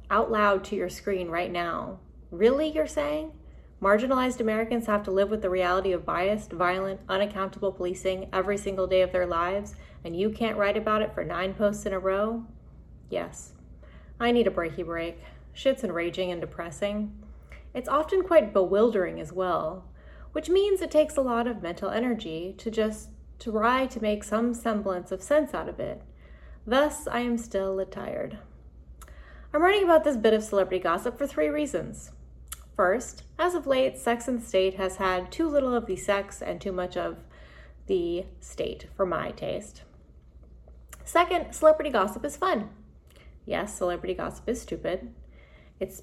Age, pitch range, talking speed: 30-49, 180-230 Hz, 165 wpm